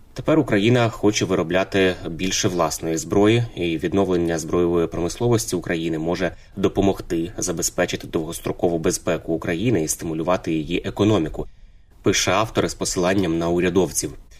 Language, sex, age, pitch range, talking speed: Ukrainian, male, 20-39, 85-100 Hz, 115 wpm